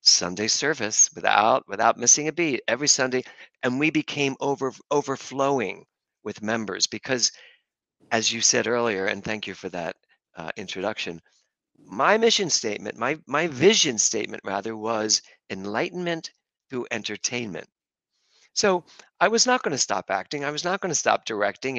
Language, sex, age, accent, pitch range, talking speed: English, male, 50-69, American, 100-130 Hz, 150 wpm